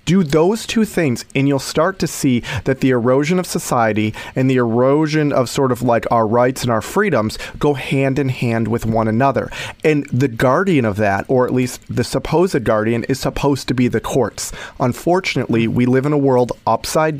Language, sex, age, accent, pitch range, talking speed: English, male, 40-59, American, 115-150 Hz, 200 wpm